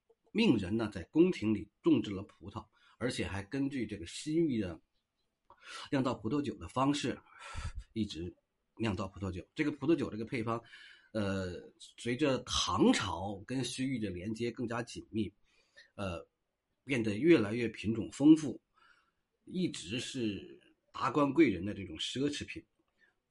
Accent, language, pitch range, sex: native, Chinese, 100-150 Hz, male